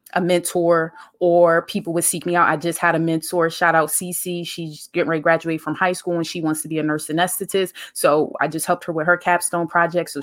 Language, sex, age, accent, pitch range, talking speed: English, female, 20-39, American, 170-205 Hz, 245 wpm